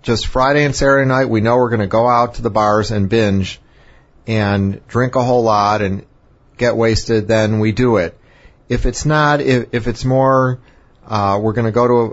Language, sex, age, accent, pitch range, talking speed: English, male, 40-59, American, 105-125 Hz, 205 wpm